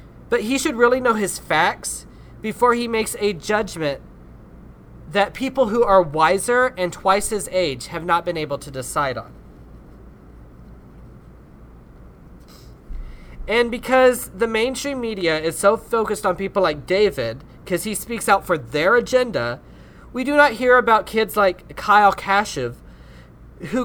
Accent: American